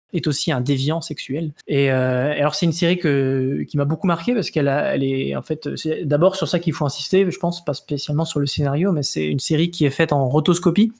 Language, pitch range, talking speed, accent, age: French, 135-165 Hz, 250 wpm, French, 20-39